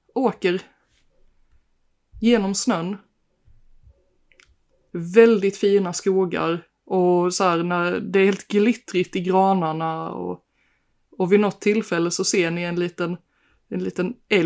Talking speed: 115 wpm